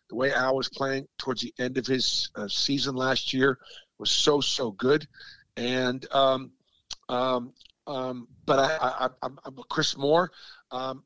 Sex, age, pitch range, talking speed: male, 50-69, 125-150 Hz, 165 wpm